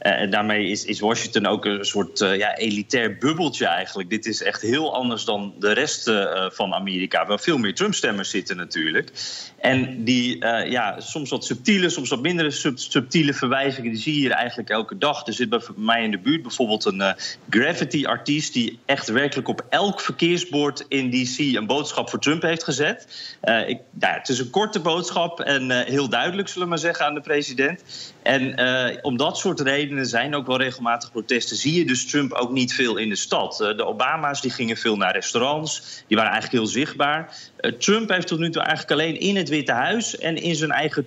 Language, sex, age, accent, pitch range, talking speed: Dutch, male, 30-49, Dutch, 120-155 Hz, 210 wpm